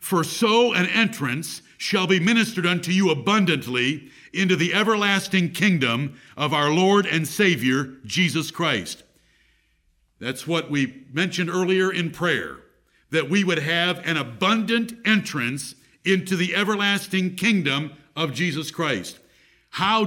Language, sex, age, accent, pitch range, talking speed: English, male, 60-79, American, 165-210 Hz, 130 wpm